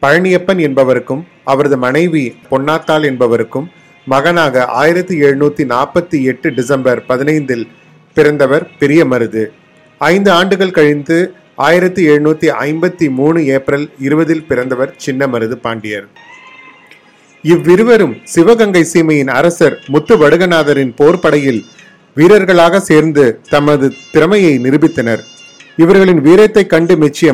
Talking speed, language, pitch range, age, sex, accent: 95 wpm, Tamil, 135-175 Hz, 30-49, male, native